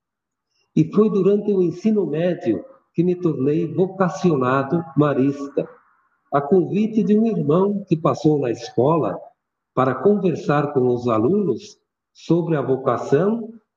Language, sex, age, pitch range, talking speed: Portuguese, male, 60-79, 140-190 Hz, 120 wpm